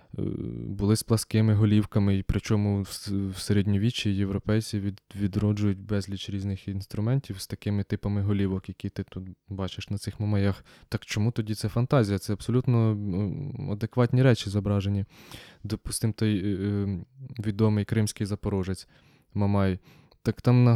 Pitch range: 100-120 Hz